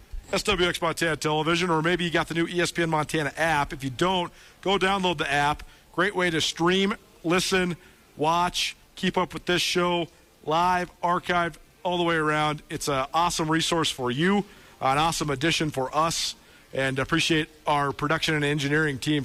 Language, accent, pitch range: English, American, 135-170 Hz